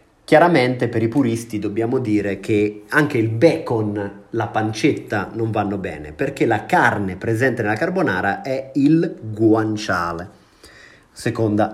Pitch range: 105-135 Hz